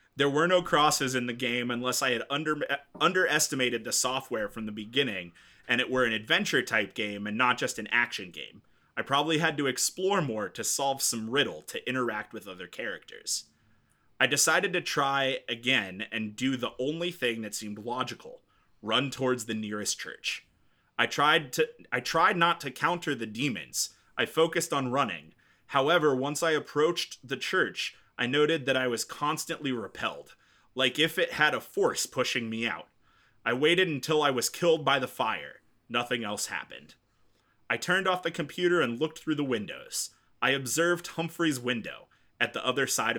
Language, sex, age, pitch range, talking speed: English, male, 30-49, 120-160 Hz, 175 wpm